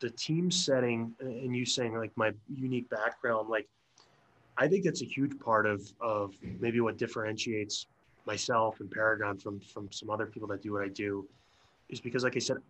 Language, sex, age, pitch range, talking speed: English, male, 20-39, 110-130 Hz, 190 wpm